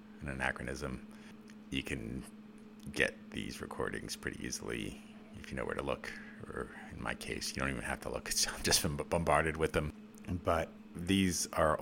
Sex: male